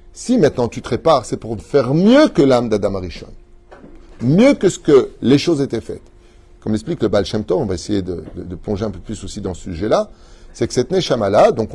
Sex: male